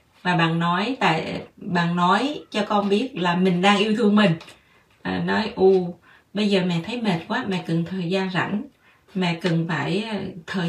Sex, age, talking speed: female, 20-39, 180 wpm